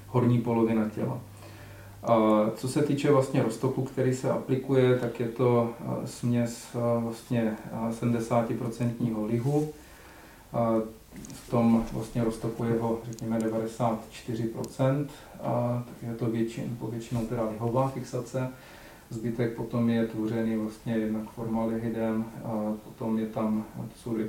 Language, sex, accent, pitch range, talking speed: Czech, male, native, 110-120 Hz, 120 wpm